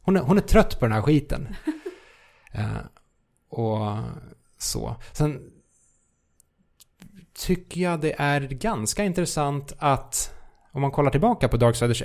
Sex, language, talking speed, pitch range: male, Swedish, 130 wpm, 110-140 Hz